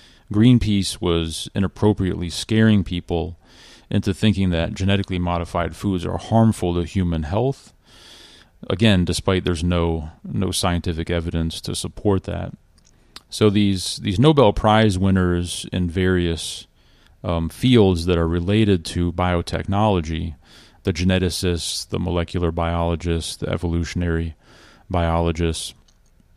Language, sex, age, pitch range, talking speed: English, male, 30-49, 85-100 Hz, 110 wpm